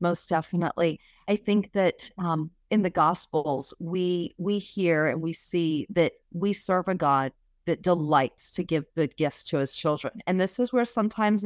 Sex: female